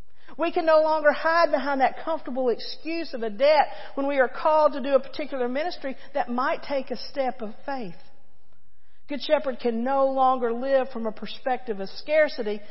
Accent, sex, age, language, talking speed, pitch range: American, female, 50-69, English, 185 wpm, 200-275 Hz